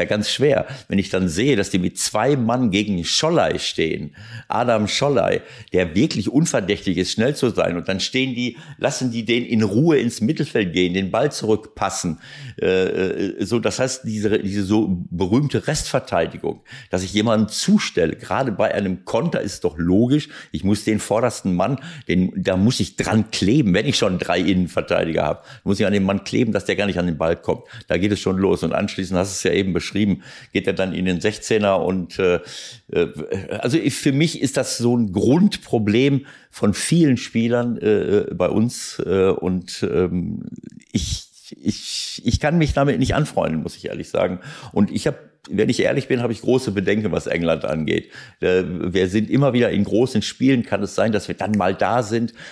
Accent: German